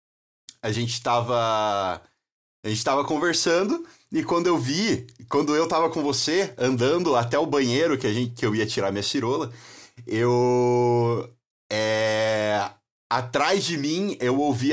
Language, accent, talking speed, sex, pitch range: English, Brazilian, 145 wpm, male, 110-140 Hz